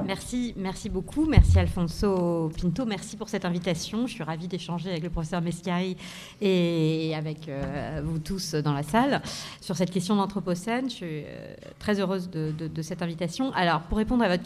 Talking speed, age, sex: 185 wpm, 40-59, female